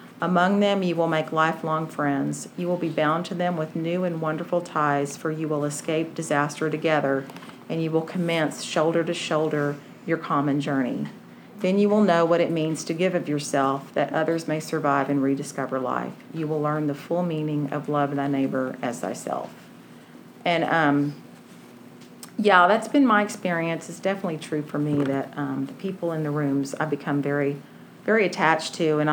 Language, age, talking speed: English, 40-59, 185 wpm